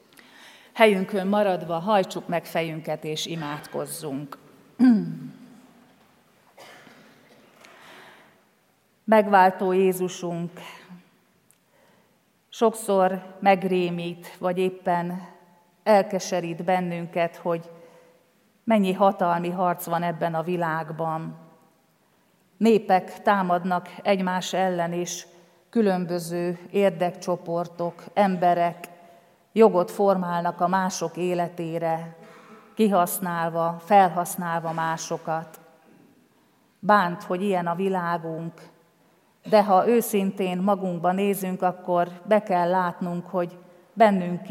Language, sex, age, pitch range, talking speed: Hungarian, female, 40-59, 170-195 Hz, 75 wpm